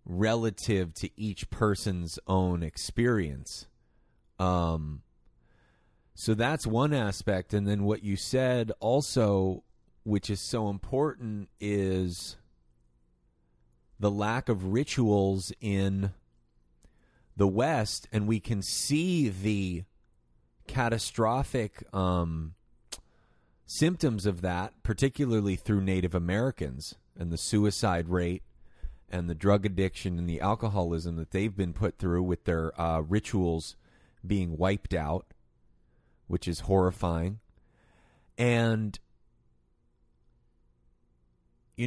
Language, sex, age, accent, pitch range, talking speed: English, male, 30-49, American, 85-105 Hz, 100 wpm